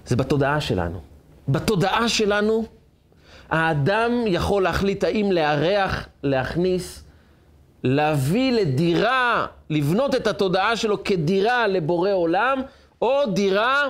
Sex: male